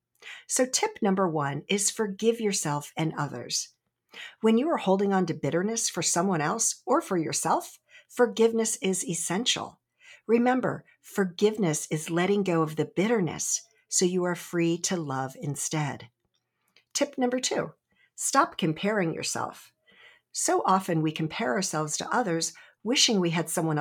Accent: American